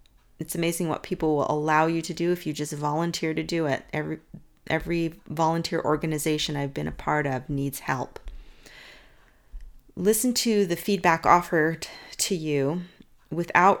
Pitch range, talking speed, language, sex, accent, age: 145-170 Hz, 150 wpm, English, female, American, 40-59